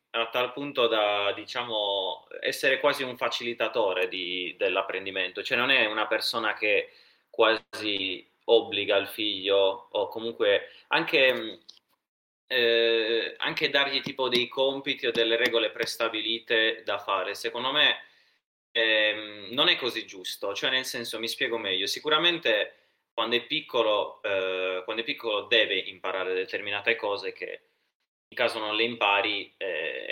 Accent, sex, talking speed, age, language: native, male, 135 wpm, 20-39, Italian